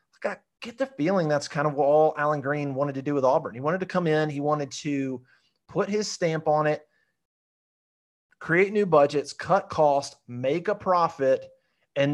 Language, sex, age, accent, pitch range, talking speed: English, male, 30-49, American, 140-165 Hz, 185 wpm